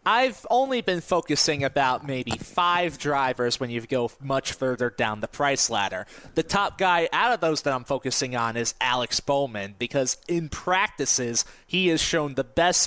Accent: American